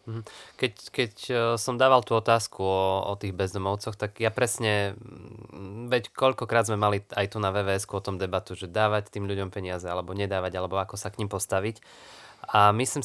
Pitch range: 95-115 Hz